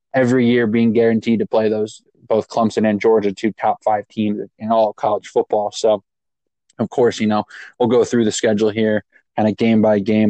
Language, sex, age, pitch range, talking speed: English, male, 20-39, 105-115 Hz, 205 wpm